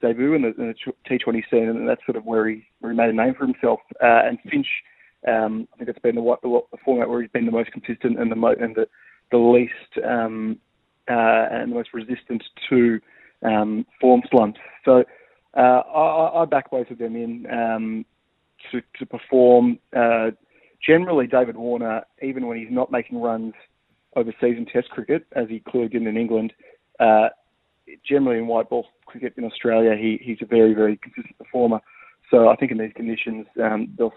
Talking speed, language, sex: 200 wpm, English, male